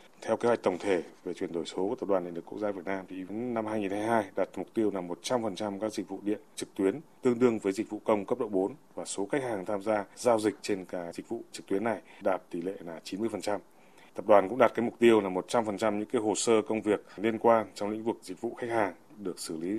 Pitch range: 95-115 Hz